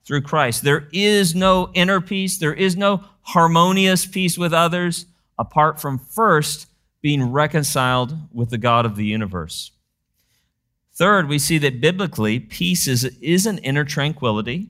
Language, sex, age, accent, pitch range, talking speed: English, male, 50-69, American, 115-150 Hz, 145 wpm